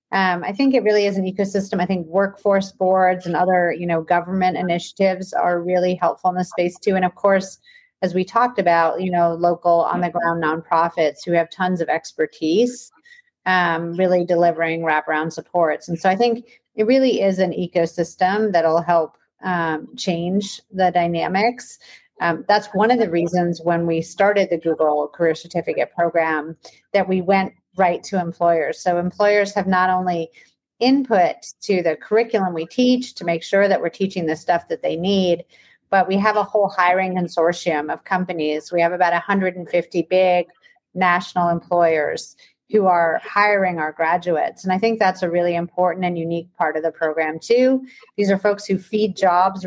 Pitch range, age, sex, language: 170-200 Hz, 30-49, female, English